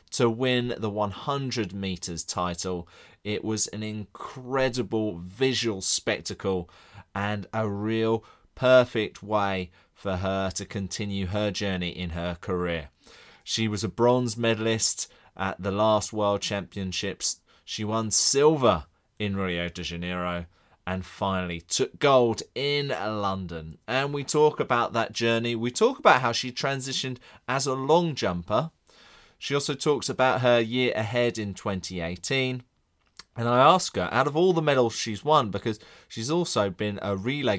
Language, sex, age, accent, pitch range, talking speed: English, male, 30-49, British, 95-135 Hz, 145 wpm